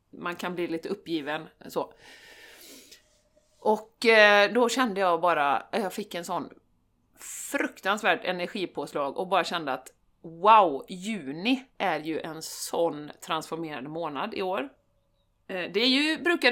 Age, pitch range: 30-49, 175-245 Hz